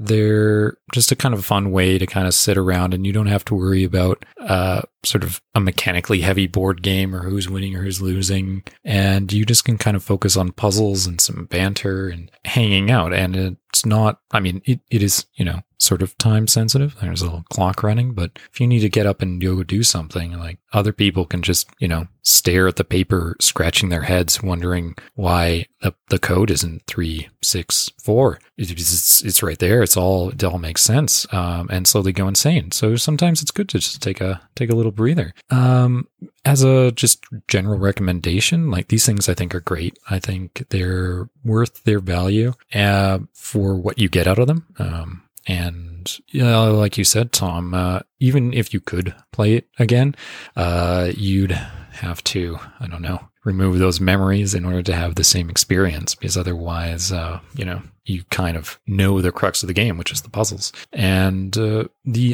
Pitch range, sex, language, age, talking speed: 90-110 Hz, male, English, 30-49, 200 wpm